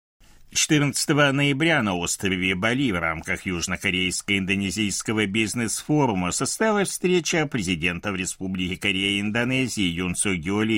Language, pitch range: Russian, 95-155 Hz